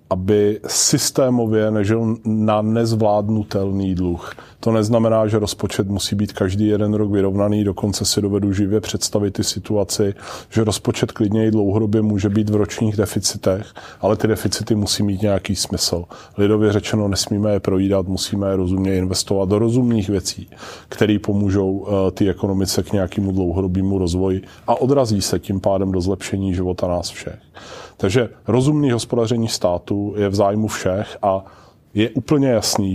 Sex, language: male, Czech